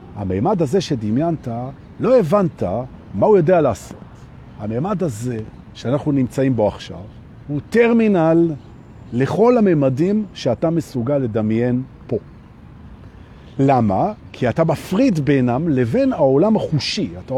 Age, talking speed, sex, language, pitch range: 50-69, 110 wpm, male, Hebrew, 115-185 Hz